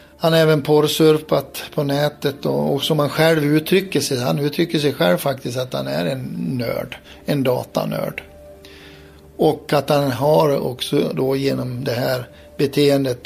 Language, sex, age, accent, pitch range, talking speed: Swedish, male, 60-79, native, 125-150 Hz, 155 wpm